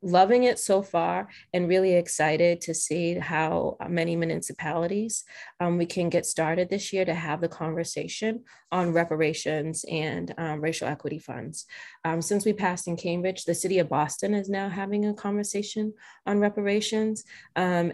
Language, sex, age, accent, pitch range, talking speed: English, female, 20-39, American, 160-185 Hz, 160 wpm